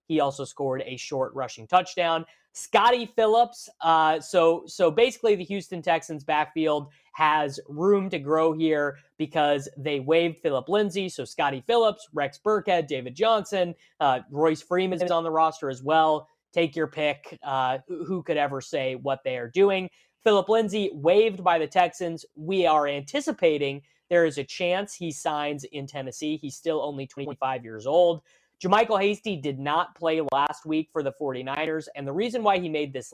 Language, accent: English, American